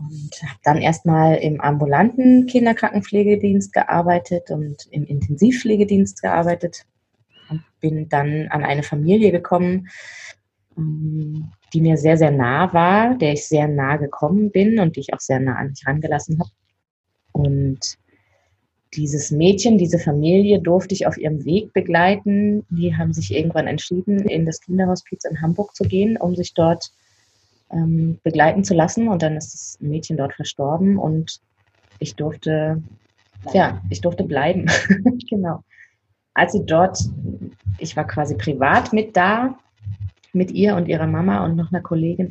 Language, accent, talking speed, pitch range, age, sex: German, German, 145 wpm, 140-180 Hz, 20-39, female